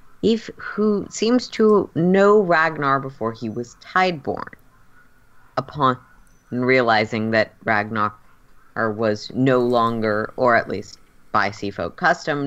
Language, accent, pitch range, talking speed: English, American, 110-150 Hz, 115 wpm